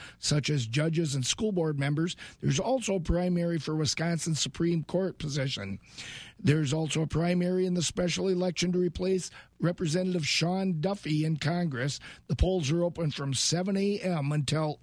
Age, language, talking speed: 50-69, English, 160 wpm